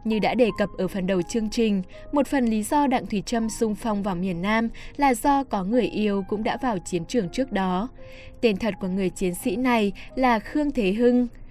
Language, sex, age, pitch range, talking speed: Vietnamese, female, 10-29, 190-240 Hz, 230 wpm